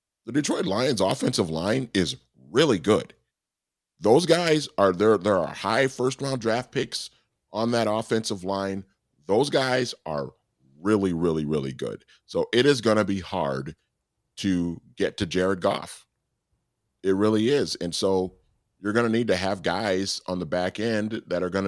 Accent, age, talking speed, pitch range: American, 40-59, 165 wpm, 85-110 Hz